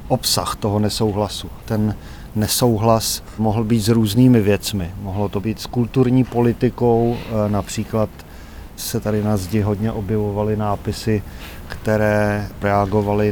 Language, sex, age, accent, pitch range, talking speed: Czech, male, 40-59, native, 105-115 Hz, 115 wpm